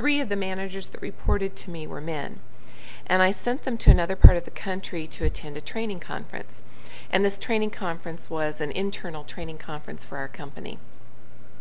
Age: 40-59